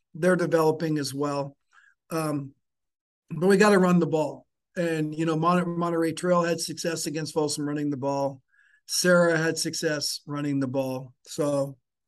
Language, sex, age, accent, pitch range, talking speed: English, male, 50-69, American, 140-160 Hz, 155 wpm